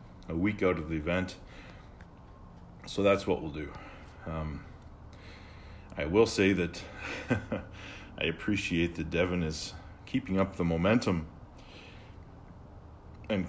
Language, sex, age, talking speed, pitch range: English, male, 40-59, 110 wpm, 80-95 Hz